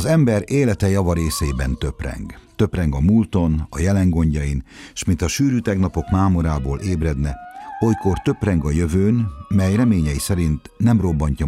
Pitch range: 75-105 Hz